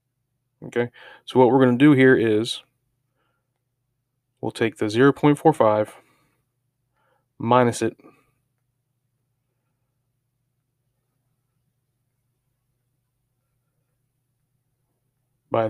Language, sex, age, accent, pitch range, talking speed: English, male, 30-49, American, 120-130 Hz, 60 wpm